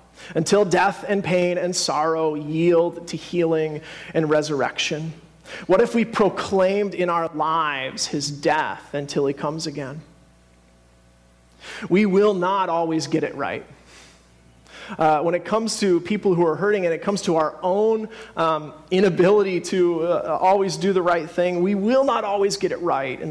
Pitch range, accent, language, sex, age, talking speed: 150-190 Hz, American, English, male, 30-49, 160 wpm